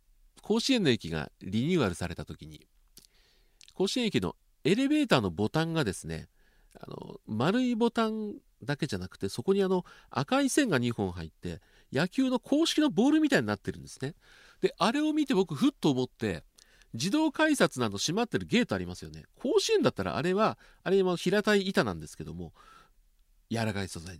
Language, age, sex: Japanese, 40-59, male